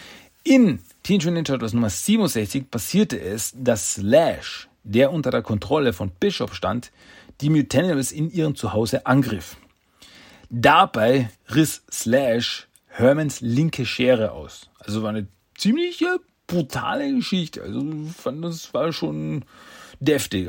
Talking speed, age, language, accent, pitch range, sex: 120 wpm, 40-59, German, German, 110-150 Hz, male